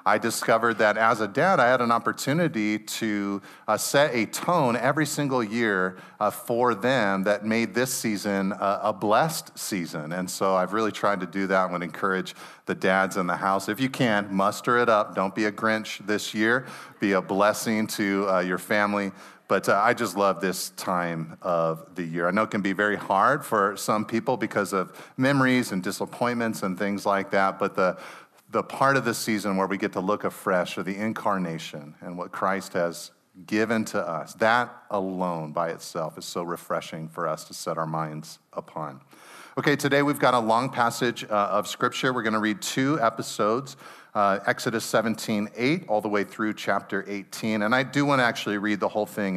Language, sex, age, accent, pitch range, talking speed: English, male, 40-59, American, 95-115 Hz, 200 wpm